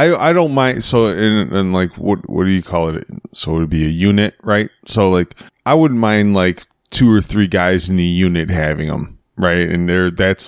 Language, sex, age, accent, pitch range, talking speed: English, male, 20-39, American, 90-115 Hz, 235 wpm